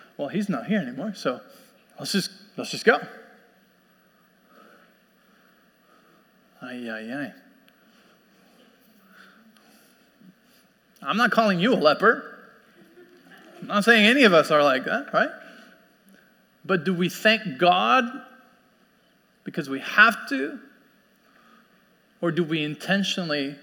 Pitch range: 175-230 Hz